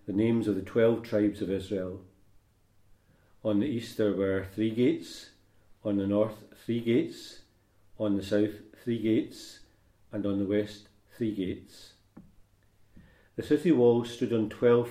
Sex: male